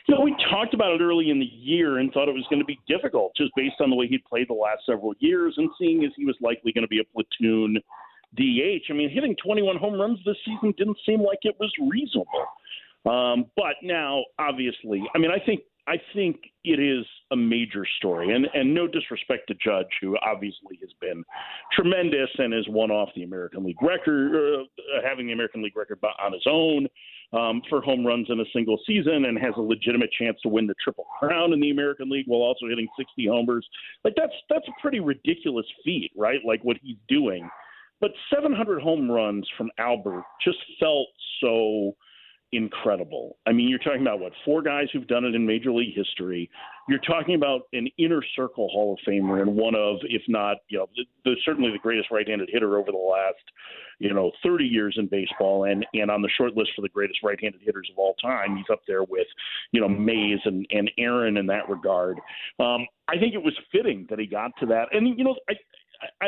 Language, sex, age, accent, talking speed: English, male, 50-69, American, 215 wpm